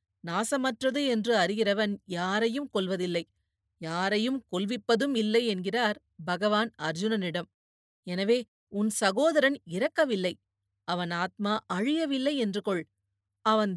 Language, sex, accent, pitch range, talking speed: Tamil, female, native, 180-260 Hz, 90 wpm